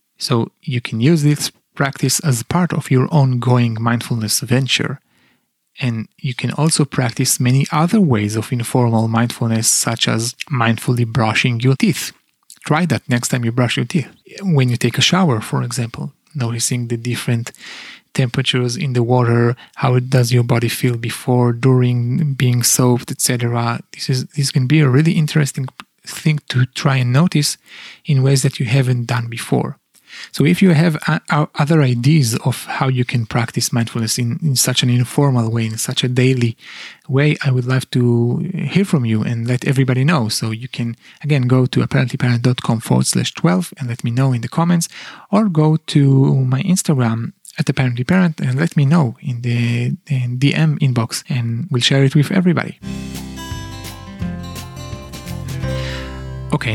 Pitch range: 120-145 Hz